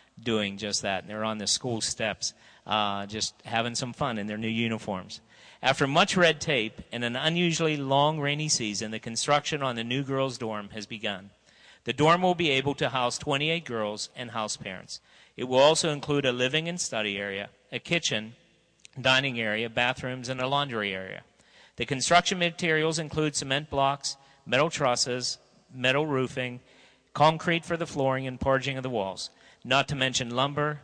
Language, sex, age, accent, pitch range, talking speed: English, male, 50-69, American, 115-140 Hz, 175 wpm